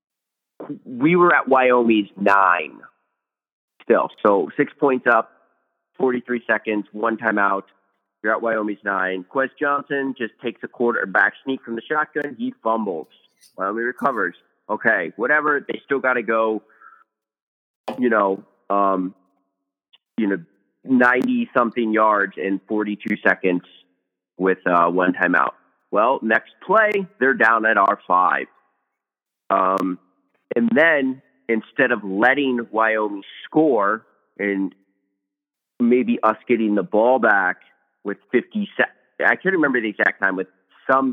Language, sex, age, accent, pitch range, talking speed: English, male, 30-49, American, 100-130 Hz, 125 wpm